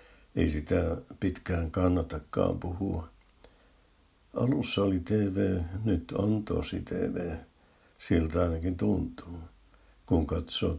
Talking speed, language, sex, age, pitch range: 95 wpm, Finnish, male, 60-79, 85-95 Hz